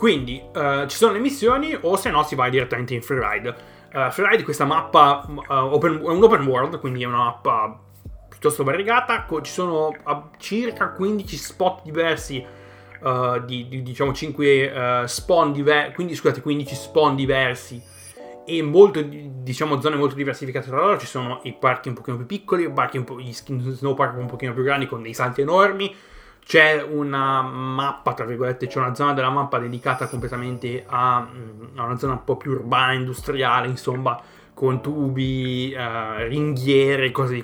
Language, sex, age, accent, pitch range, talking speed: Italian, male, 30-49, native, 125-145 Hz, 175 wpm